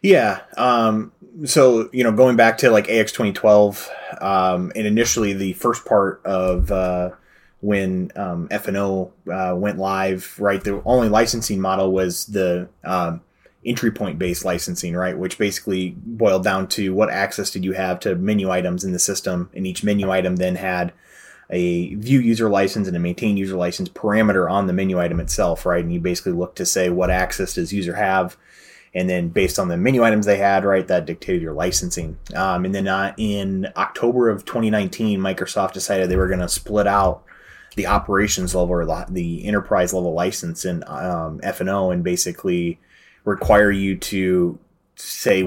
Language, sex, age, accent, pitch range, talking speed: English, male, 30-49, American, 90-105 Hz, 175 wpm